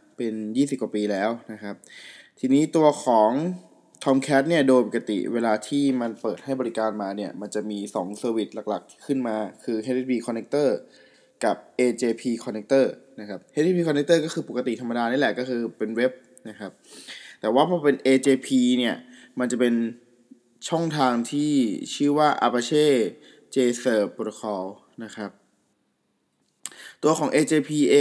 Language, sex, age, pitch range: Thai, male, 20-39, 115-140 Hz